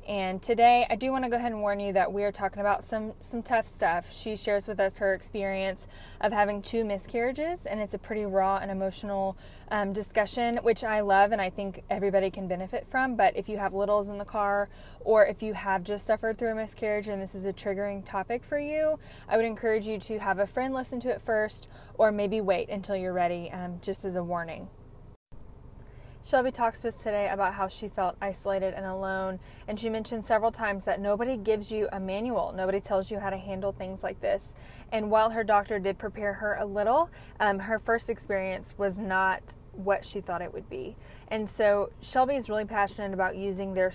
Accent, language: American, English